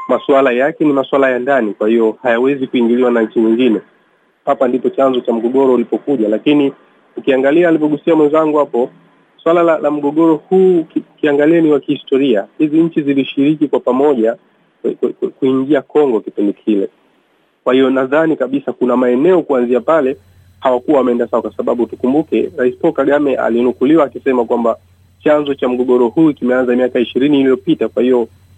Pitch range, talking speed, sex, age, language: 115-140 Hz, 155 wpm, male, 40-59, Swahili